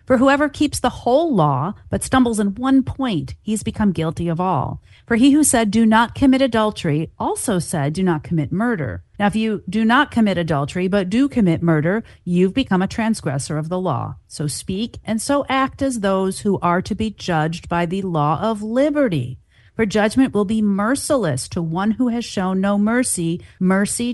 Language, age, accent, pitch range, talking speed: English, 40-59, American, 170-230 Hz, 195 wpm